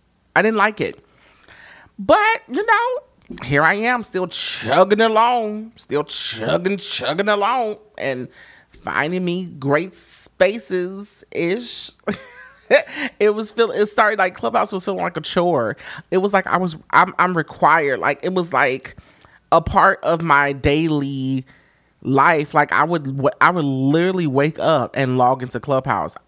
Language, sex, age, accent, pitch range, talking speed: English, male, 30-49, American, 125-180 Hz, 150 wpm